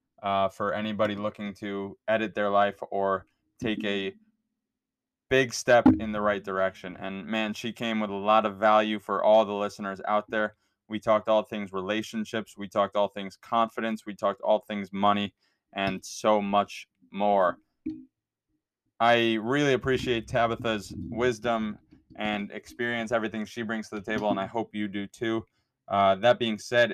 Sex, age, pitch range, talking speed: male, 20-39, 100-115 Hz, 165 wpm